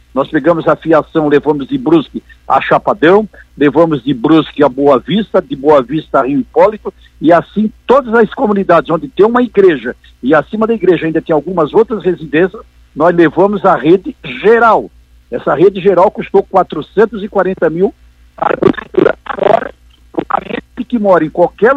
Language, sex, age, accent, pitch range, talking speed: Portuguese, male, 60-79, Brazilian, 155-220 Hz, 160 wpm